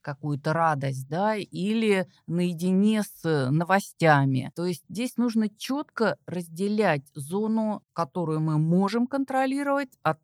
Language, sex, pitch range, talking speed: Russian, female, 155-210 Hz, 110 wpm